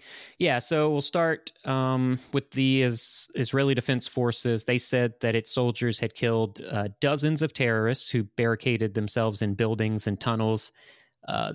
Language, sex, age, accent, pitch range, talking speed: English, male, 30-49, American, 110-135 Hz, 160 wpm